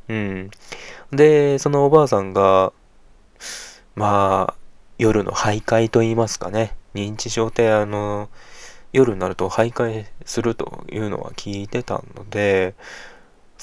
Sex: male